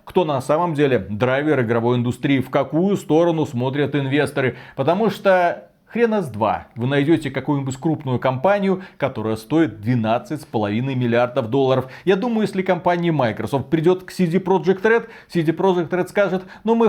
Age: 40-59